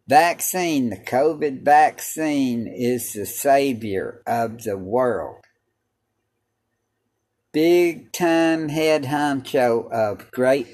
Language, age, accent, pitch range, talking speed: English, 60-79, American, 115-135 Hz, 90 wpm